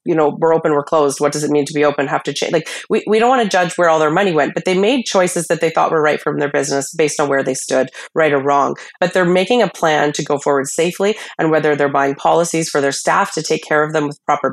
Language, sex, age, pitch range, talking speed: English, female, 30-49, 140-165 Hz, 300 wpm